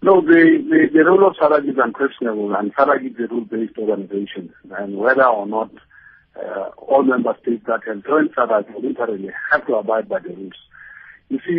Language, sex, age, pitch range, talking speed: English, male, 50-69, 115-150 Hz, 185 wpm